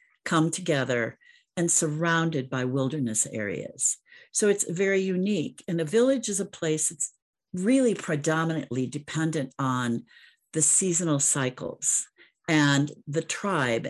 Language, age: English, 50-69